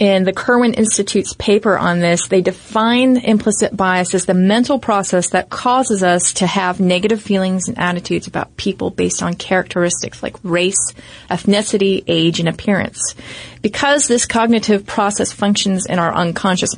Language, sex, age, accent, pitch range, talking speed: English, female, 30-49, American, 175-215 Hz, 155 wpm